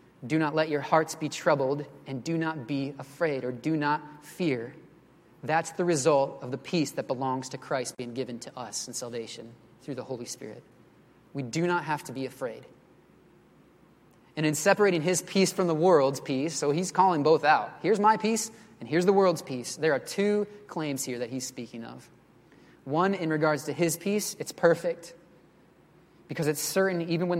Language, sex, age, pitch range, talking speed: English, male, 20-39, 135-170 Hz, 190 wpm